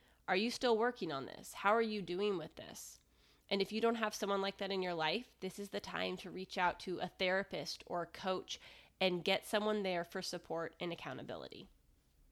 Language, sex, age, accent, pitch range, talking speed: English, female, 20-39, American, 175-200 Hz, 215 wpm